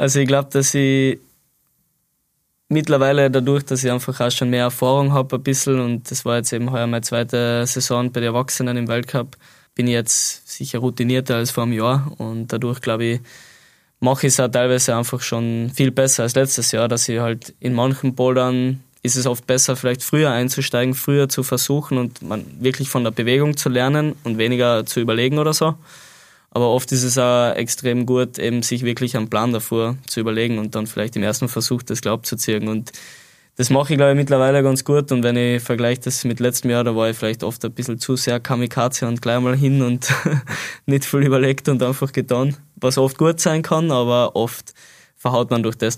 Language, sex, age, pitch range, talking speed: German, male, 20-39, 115-135 Hz, 210 wpm